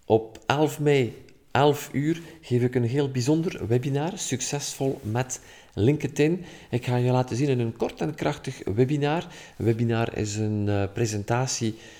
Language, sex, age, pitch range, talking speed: Dutch, male, 50-69, 110-135 Hz, 155 wpm